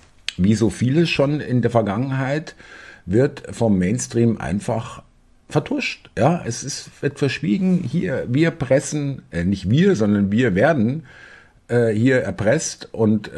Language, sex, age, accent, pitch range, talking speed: German, male, 50-69, German, 90-120 Hz, 130 wpm